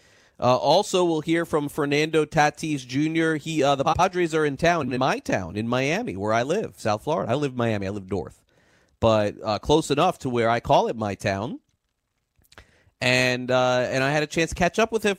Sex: male